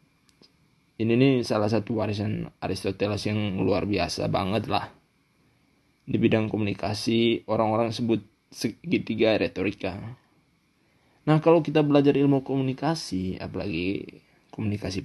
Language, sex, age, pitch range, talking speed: Indonesian, male, 20-39, 105-130 Hz, 105 wpm